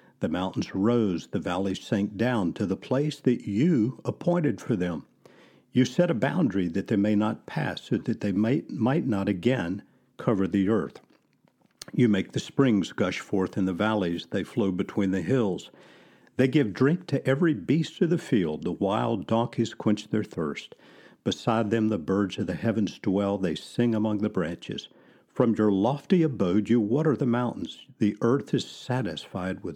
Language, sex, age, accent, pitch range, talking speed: English, male, 60-79, American, 100-130 Hz, 180 wpm